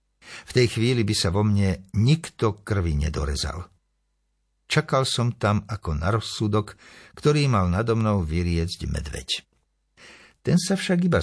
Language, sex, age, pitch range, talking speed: Slovak, male, 60-79, 85-125 Hz, 135 wpm